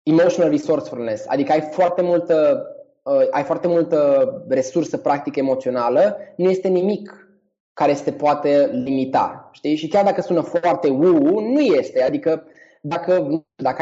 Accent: native